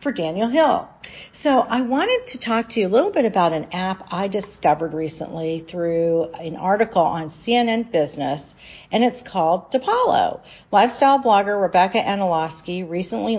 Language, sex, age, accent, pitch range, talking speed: English, female, 40-59, American, 165-220 Hz, 150 wpm